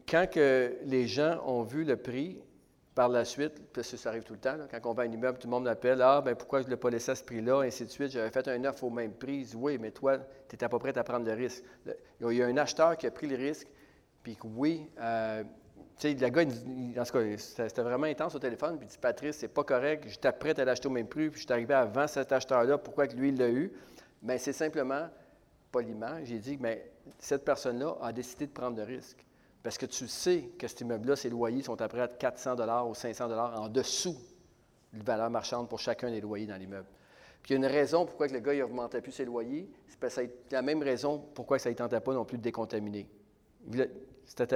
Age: 40-59